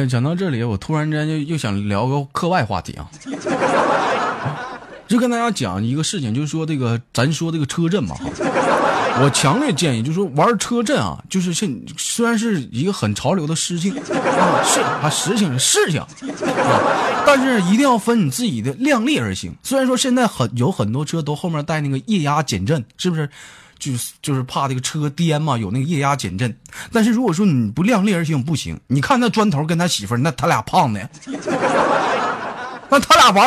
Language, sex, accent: Chinese, male, native